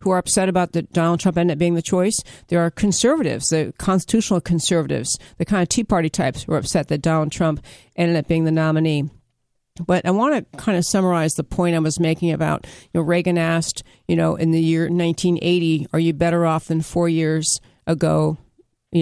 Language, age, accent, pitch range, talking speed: English, 50-69, American, 160-180 Hz, 210 wpm